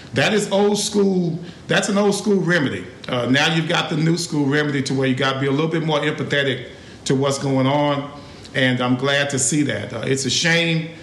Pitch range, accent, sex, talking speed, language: 125-150 Hz, American, male, 230 wpm, English